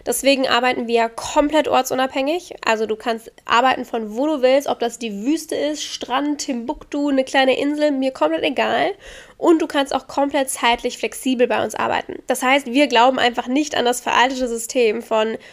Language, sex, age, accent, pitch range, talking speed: German, female, 10-29, German, 225-275 Hz, 180 wpm